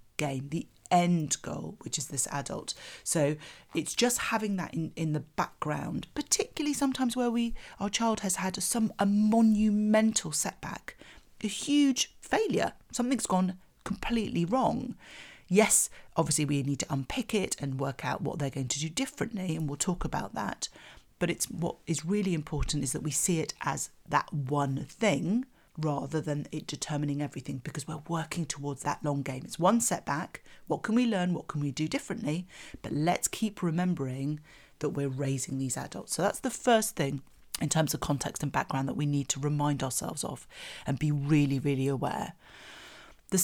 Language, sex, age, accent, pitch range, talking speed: English, female, 40-59, British, 145-200 Hz, 180 wpm